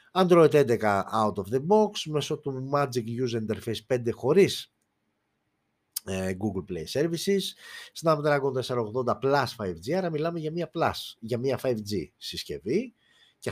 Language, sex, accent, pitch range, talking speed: Greek, male, native, 115-185 Hz, 135 wpm